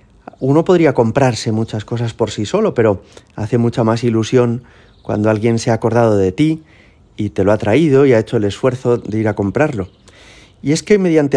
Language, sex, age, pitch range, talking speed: Spanish, male, 30-49, 100-130 Hz, 200 wpm